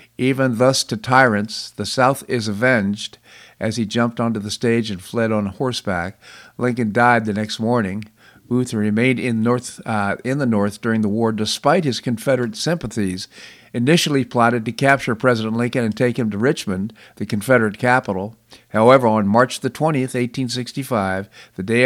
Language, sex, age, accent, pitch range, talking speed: English, male, 50-69, American, 110-130 Hz, 160 wpm